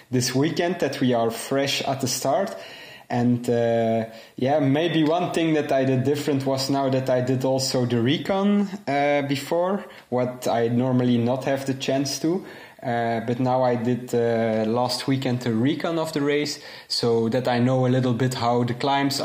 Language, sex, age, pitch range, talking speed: English, male, 20-39, 120-140 Hz, 185 wpm